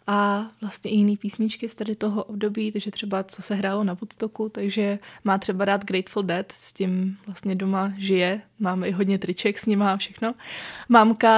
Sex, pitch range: female, 200-235 Hz